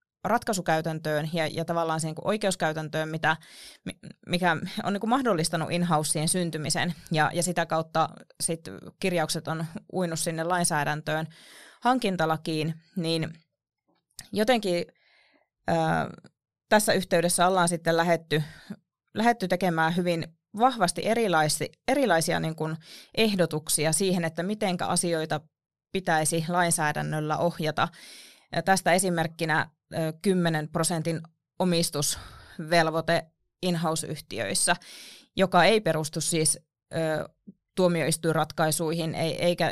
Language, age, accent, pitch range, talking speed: Finnish, 20-39, native, 160-185 Hz, 95 wpm